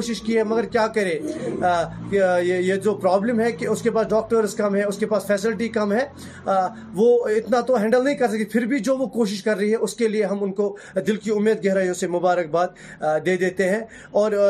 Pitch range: 190-235 Hz